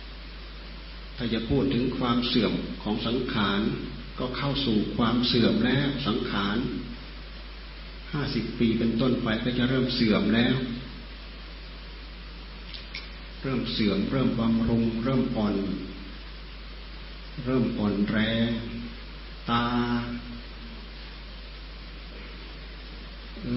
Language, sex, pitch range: Thai, male, 110-120 Hz